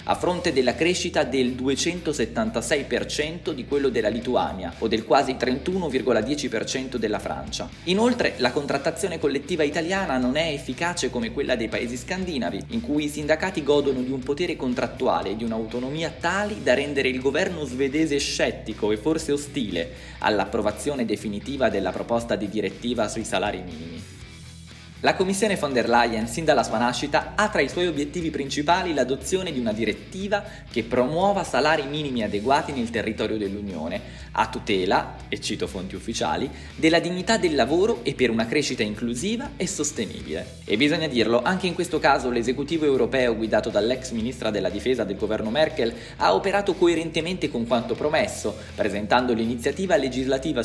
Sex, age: male, 20-39